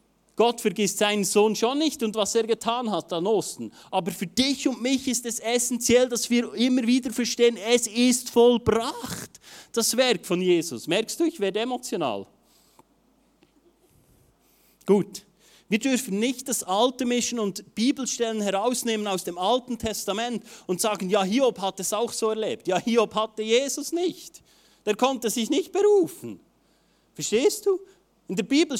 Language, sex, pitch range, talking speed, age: German, male, 200-260 Hz, 160 wpm, 30-49